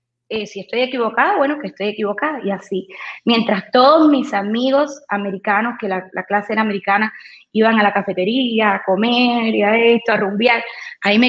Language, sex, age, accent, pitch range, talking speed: English, female, 20-39, American, 210-250 Hz, 180 wpm